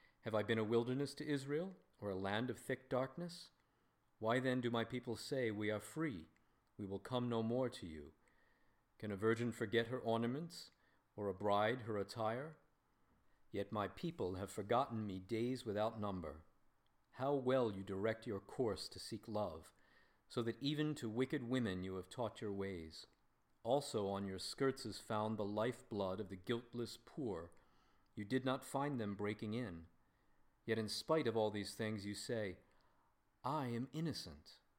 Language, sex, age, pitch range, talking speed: English, male, 50-69, 100-125 Hz, 170 wpm